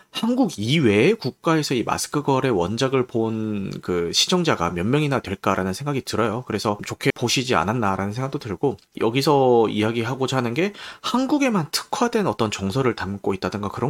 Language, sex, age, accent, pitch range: Korean, male, 30-49, native, 110-155 Hz